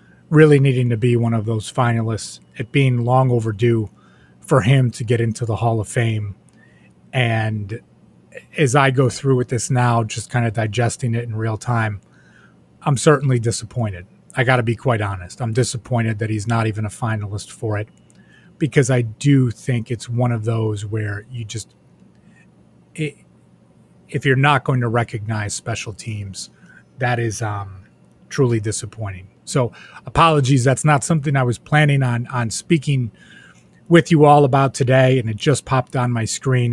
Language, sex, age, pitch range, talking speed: English, male, 30-49, 110-130 Hz, 170 wpm